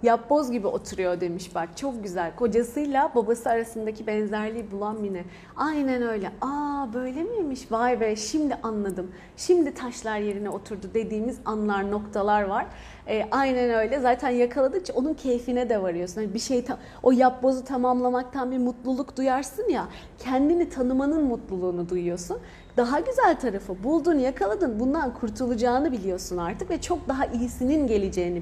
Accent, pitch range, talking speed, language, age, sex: native, 215-280 Hz, 140 wpm, Turkish, 40-59, female